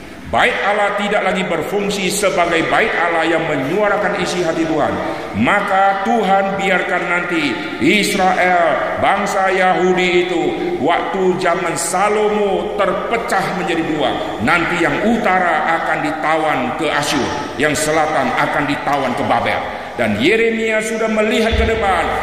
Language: Indonesian